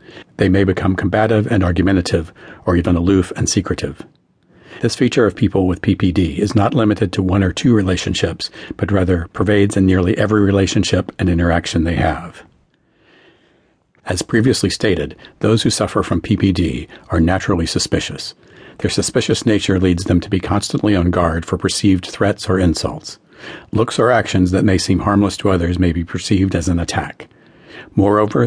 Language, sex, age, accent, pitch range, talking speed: English, male, 50-69, American, 90-105 Hz, 165 wpm